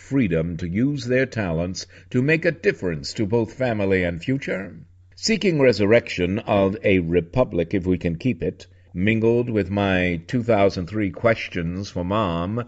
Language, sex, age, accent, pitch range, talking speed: English, male, 50-69, American, 95-120 Hz, 155 wpm